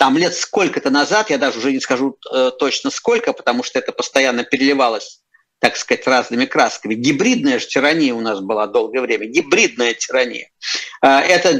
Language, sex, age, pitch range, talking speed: Russian, male, 50-69, 140-235 Hz, 160 wpm